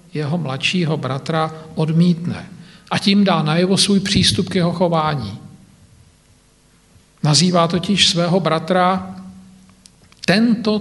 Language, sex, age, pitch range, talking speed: Slovak, male, 50-69, 150-185 Hz, 105 wpm